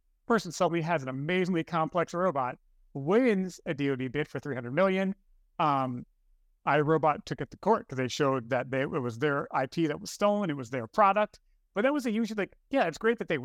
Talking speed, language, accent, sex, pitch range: 215 wpm, English, American, male, 130-170 Hz